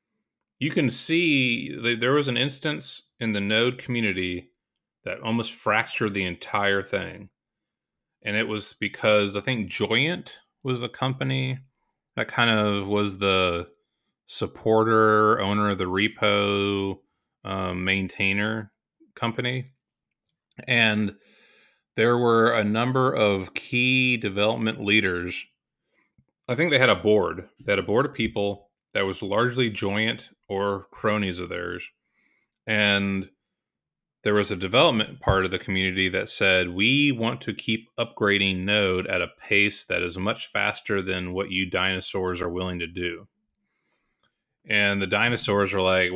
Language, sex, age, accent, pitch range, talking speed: English, male, 30-49, American, 95-115 Hz, 140 wpm